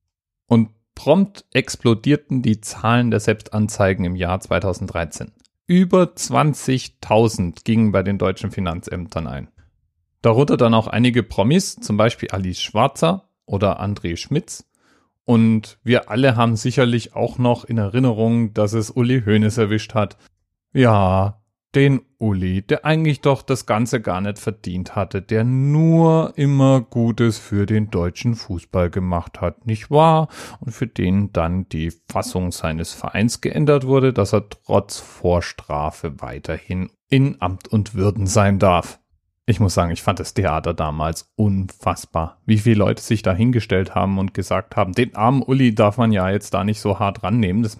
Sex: male